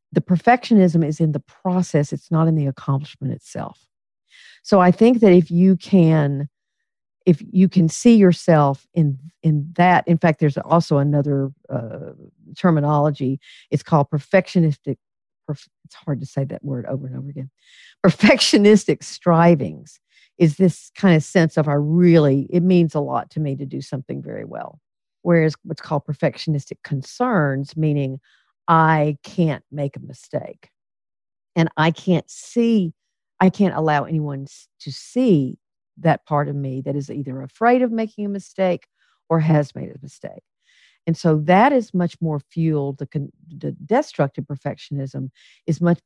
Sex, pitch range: female, 140-180 Hz